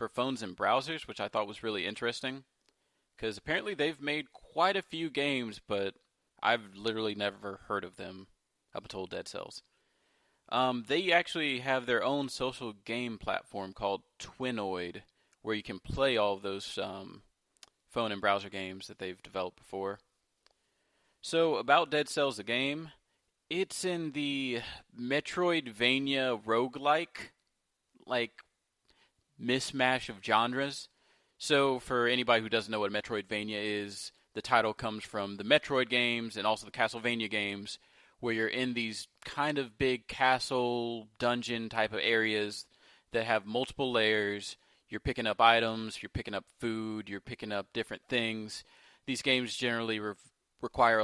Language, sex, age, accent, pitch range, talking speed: English, male, 30-49, American, 105-130 Hz, 145 wpm